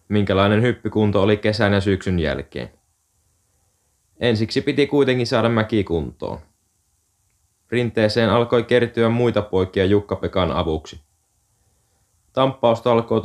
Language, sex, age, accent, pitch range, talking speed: Finnish, male, 20-39, native, 90-110 Hz, 95 wpm